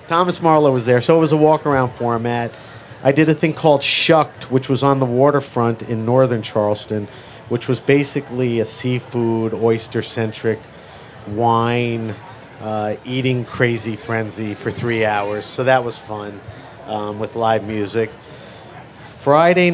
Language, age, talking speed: English, 50-69, 145 wpm